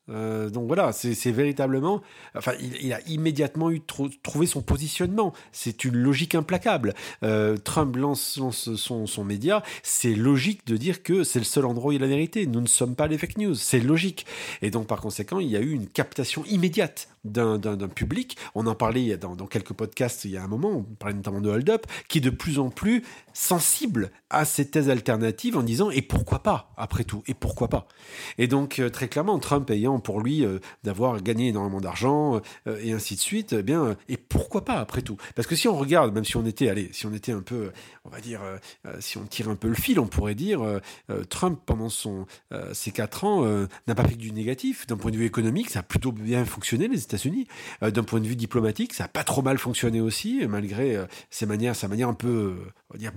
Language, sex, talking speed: French, male, 235 wpm